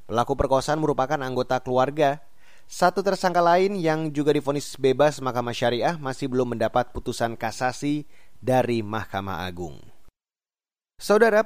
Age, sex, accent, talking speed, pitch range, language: 30-49, male, native, 120 wpm, 125-160 Hz, Indonesian